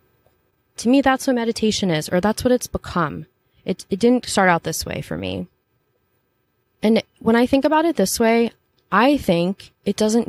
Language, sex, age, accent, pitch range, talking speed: English, female, 20-39, American, 160-195 Hz, 185 wpm